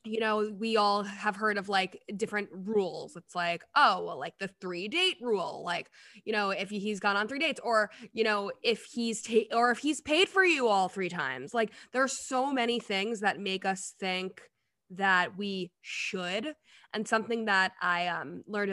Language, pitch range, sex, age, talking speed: English, 190-240 Hz, female, 20-39, 195 wpm